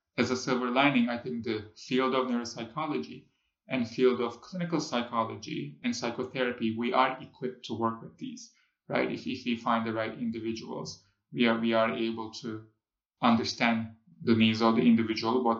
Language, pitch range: English, 115-135 Hz